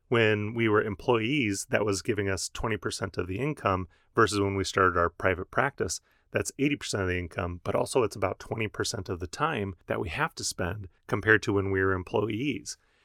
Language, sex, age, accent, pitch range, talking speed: English, male, 30-49, American, 100-120 Hz, 200 wpm